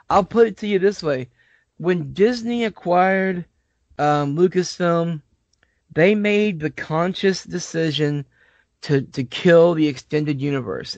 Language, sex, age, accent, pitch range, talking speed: English, male, 20-39, American, 140-175 Hz, 125 wpm